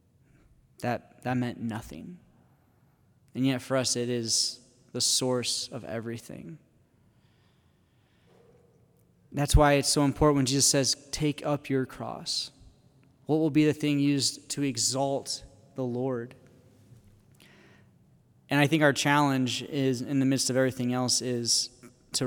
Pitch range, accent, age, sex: 120-140 Hz, American, 20-39, male